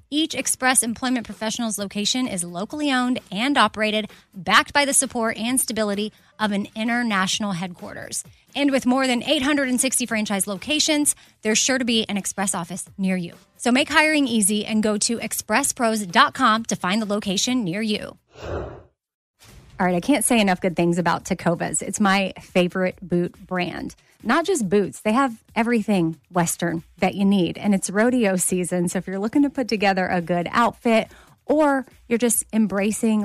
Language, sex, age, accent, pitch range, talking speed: English, female, 20-39, American, 185-235 Hz, 170 wpm